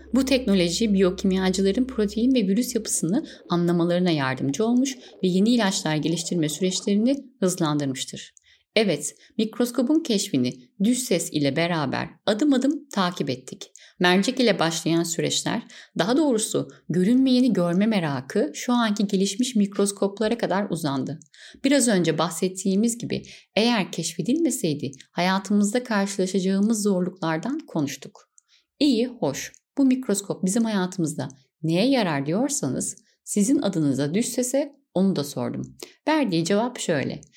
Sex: female